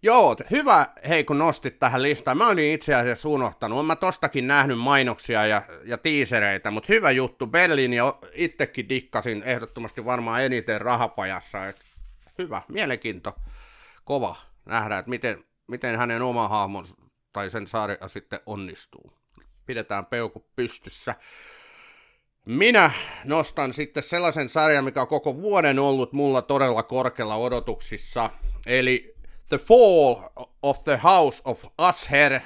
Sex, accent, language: male, native, Finnish